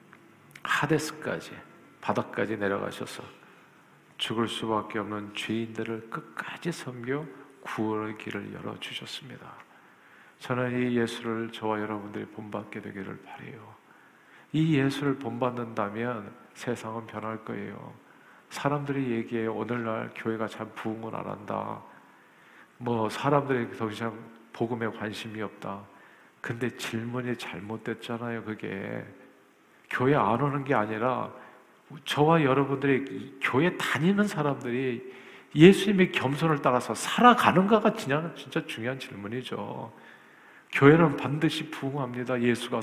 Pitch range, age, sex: 110-145 Hz, 50-69, male